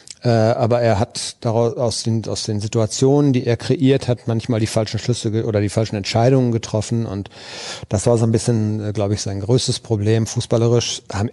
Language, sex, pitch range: German, male, 105-125 Hz